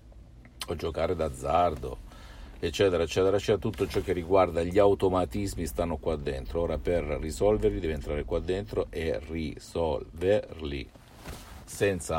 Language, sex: Italian, male